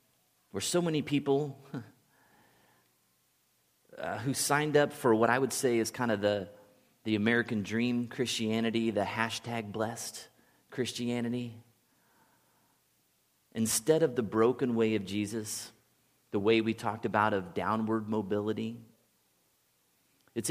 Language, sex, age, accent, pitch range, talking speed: English, male, 30-49, American, 105-130 Hz, 120 wpm